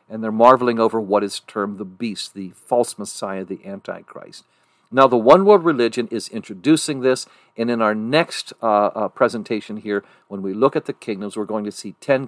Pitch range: 105-140 Hz